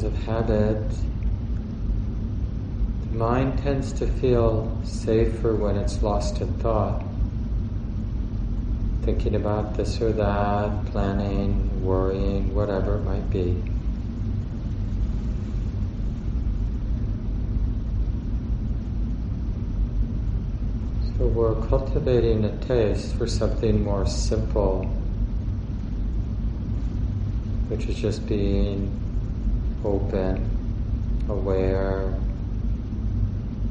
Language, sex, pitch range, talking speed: English, male, 100-110 Hz, 70 wpm